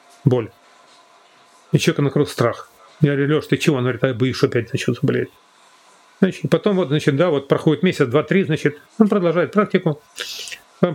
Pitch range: 150-195 Hz